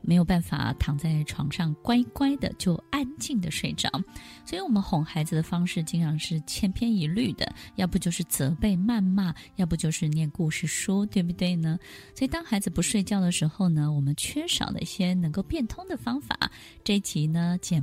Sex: female